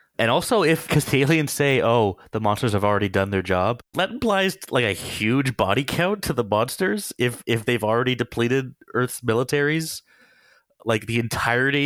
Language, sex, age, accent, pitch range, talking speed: English, male, 20-39, American, 95-125 Hz, 175 wpm